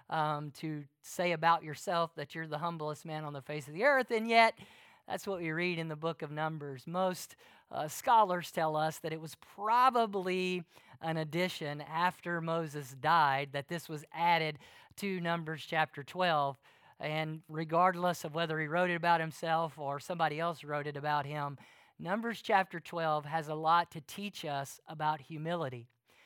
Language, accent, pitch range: English, American, 155-190 Hz